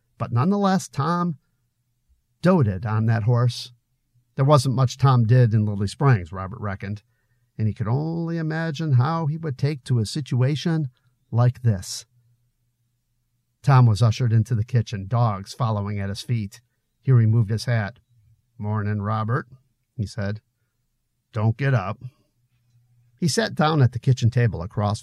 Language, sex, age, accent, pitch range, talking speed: English, male, 50-69, American, 110-135 Hz, 145 wpm